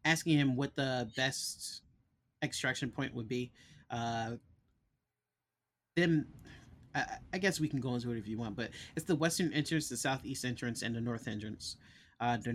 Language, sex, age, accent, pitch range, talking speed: English, male, 30-49, American, 110-135 Hz, 170 wpm